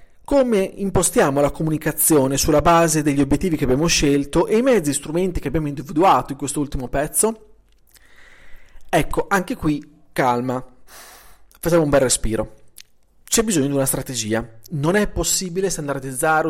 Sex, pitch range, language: male, 130-170 Hz, Italian